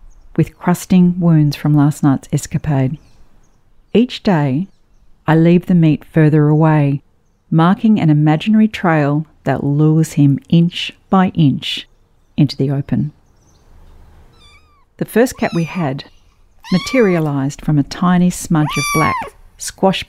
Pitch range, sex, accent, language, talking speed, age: 135-170 Hz, female, Australian, English, 120 wpm, 40-59